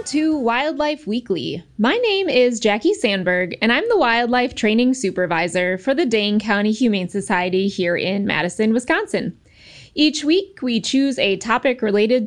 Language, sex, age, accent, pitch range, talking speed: English, female, 20-39, American, 210-300 Hz, 150 wpm